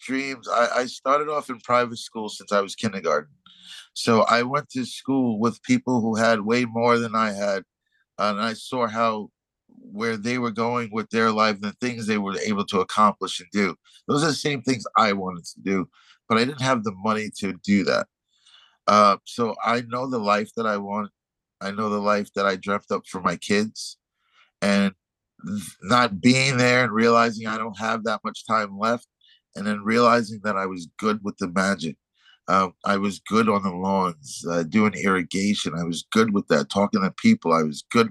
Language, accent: English, American